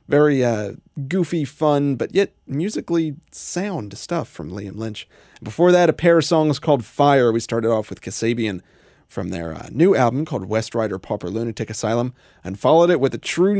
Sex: male